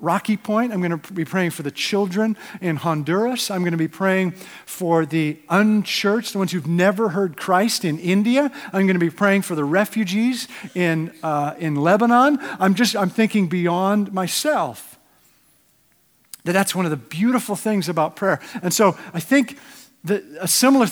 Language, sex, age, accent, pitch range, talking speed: English, male, 50-69, American, 155-205 Hz, 180 wpm